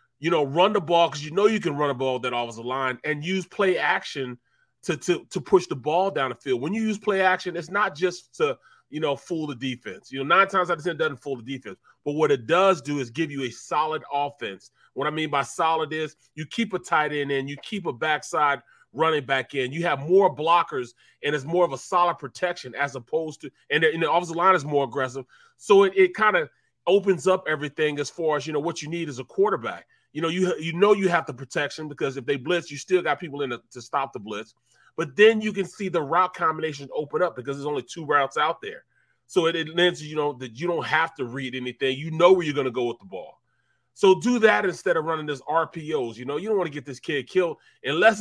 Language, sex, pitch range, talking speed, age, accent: English, male, 140-185 Hz, 260 wpm, 30-49, American